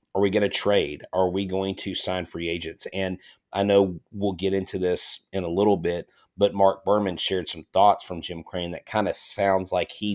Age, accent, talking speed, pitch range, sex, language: 30-49, American, 225 wpm, 90-110 Hz, male, English